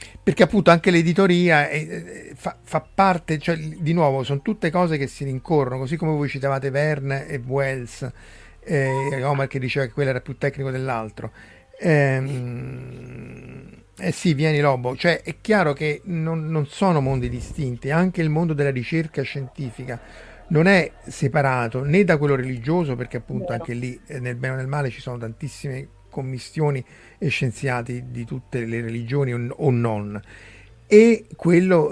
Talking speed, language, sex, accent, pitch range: 150 wpm, Italian, male, native, 125-155 Hz